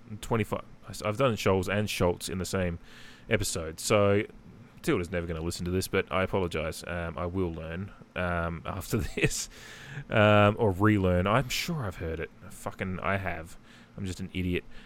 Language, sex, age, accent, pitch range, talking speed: English, male, 20-39, Australian, 90-110 Hz, 165 wpm